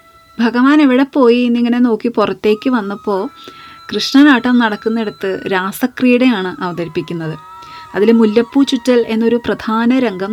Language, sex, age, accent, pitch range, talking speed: Malayalam, female, 20-39, native, 200-260 Hz, 100 wpm